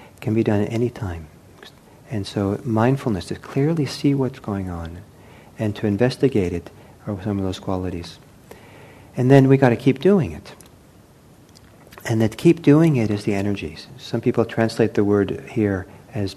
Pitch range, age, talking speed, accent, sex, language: 100-130 Hz, 50-69, 170 wpm, American, male, English